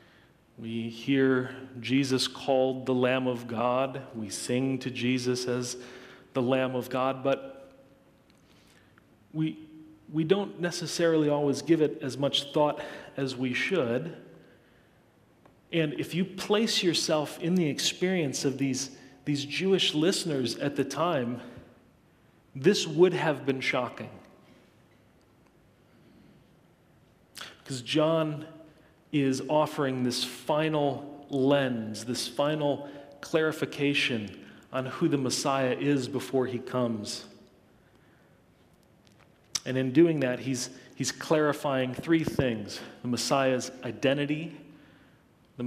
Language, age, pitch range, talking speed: English, 40-59, 125-150 Hz, 110 wpm